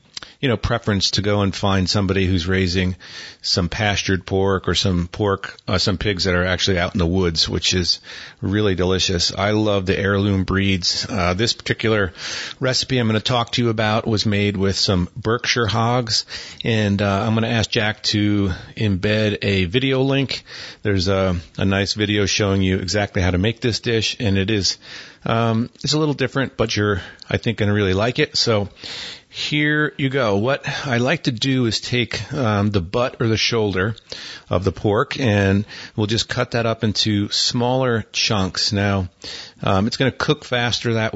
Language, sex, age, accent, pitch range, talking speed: English, male, 40-59, American, 95-120 Hz, 190 wpm